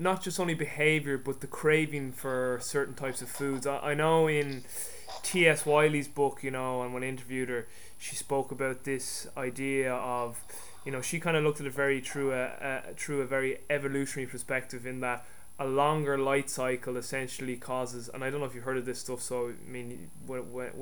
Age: 20-39